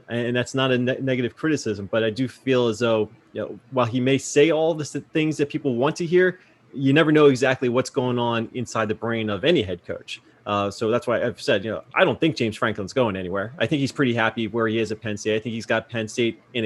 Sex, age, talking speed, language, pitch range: male, 20-39, 265 wpm, English, 115-140 Hz